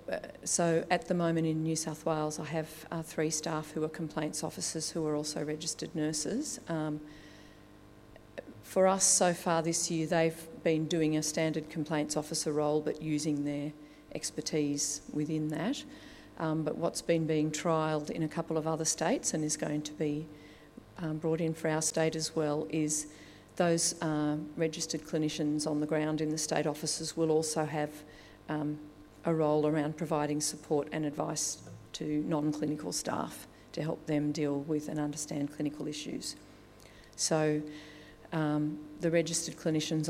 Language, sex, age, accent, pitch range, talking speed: English, female, 40-59, Australian, 150-160 Hz, 160 wpm